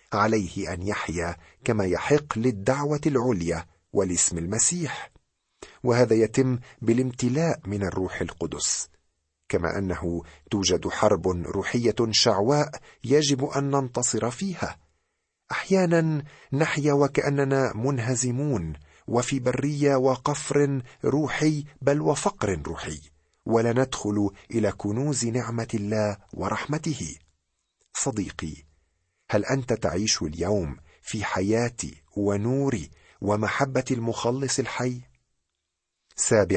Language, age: Arabic, 50-69